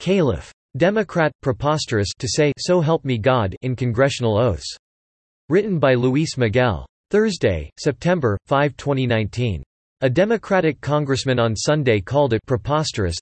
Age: 40-59